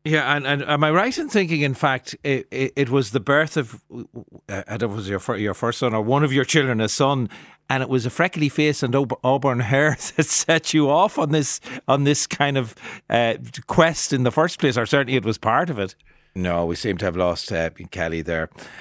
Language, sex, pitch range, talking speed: English, male, 95-130 Hz, 245 wpm